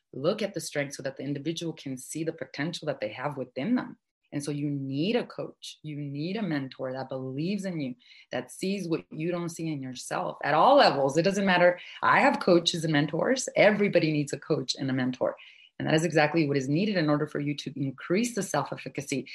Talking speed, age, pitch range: 225 wpm, 30-49, 140-175 Hz